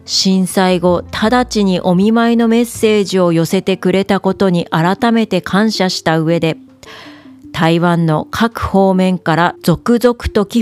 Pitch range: 175-235 Hz